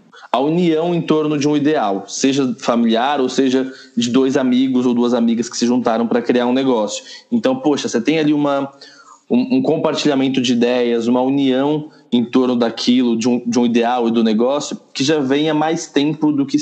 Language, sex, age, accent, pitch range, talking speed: Portuguese, male, 20-39, Brazilian, 120-150 Hz, 195 wpm